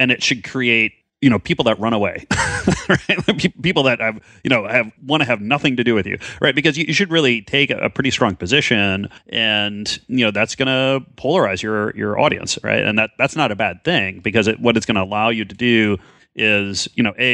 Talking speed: 240 wpm